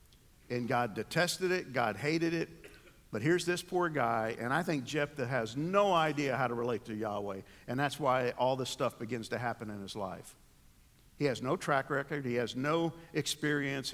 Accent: American